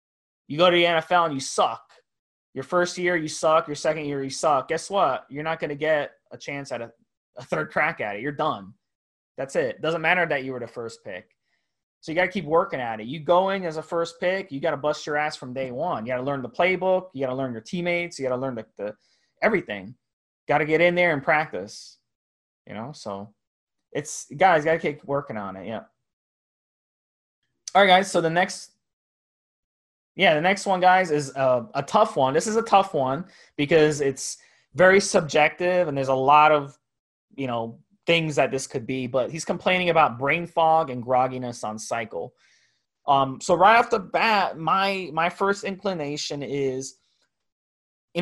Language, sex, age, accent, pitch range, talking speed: English, male, 20-39, American, 130-180 Hz, 210 wpm